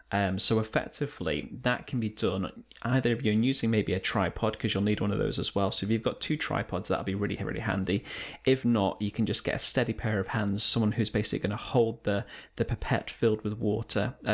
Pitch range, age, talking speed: 100-120 Hz, 20-39, 235 wpm